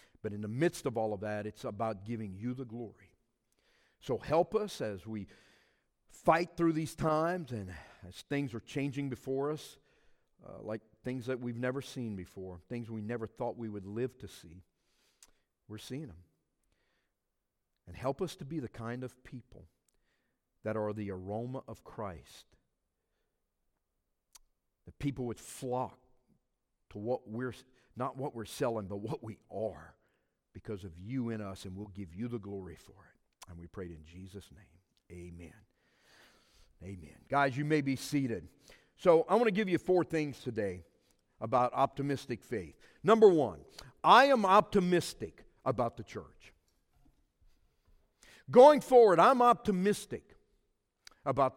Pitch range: 100-140 Hz